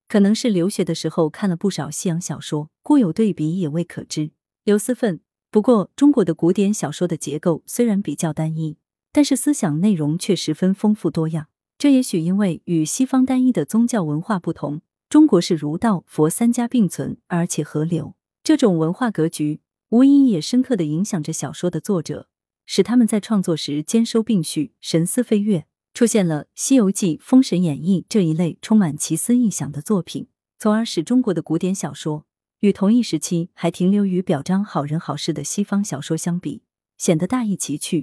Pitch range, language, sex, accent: 160-220 Hz, Chinese, female, native